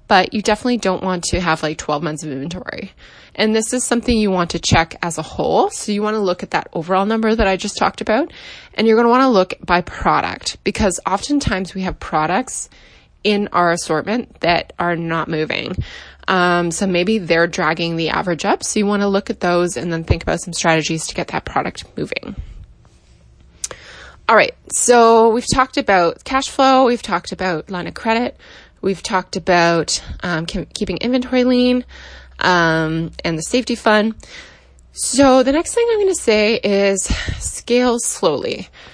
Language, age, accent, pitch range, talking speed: English, 20-39, American, 175-240 Hz, 190 wpm